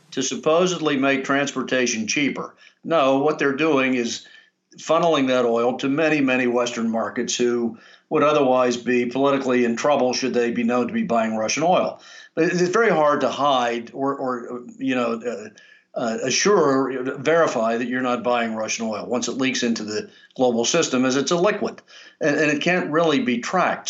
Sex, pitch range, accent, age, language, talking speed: male, 125-160 Hz, American, 50-69, English, 180 wpm